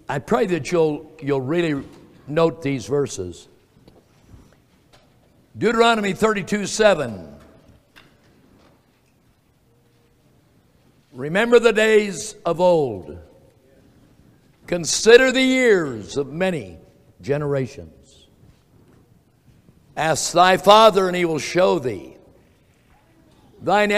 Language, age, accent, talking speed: English, 60-79, American, 80 wpm